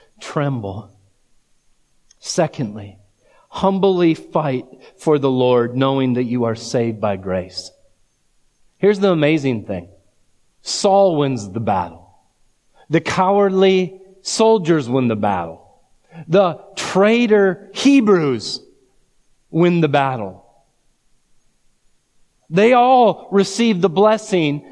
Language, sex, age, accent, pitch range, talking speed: English, male, 40-59, American, 125-195 Hz, 95 wpm